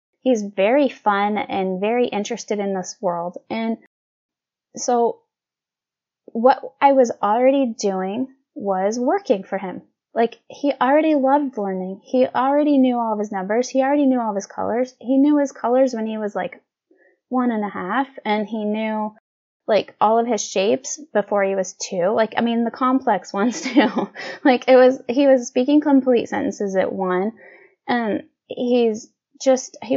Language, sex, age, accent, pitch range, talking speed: English, female, 10-29, American, 210-265 Hz, 170 wpm